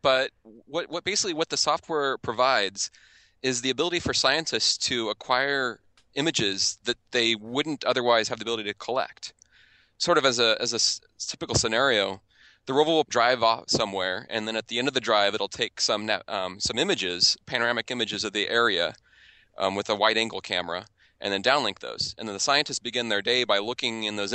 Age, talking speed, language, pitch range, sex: 20-39, 195 wpm, English, 100-125 Hz, male